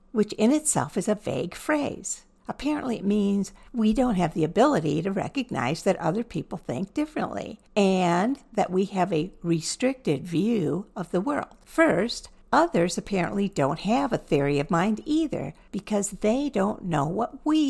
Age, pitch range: 60-79, 165-225 Hz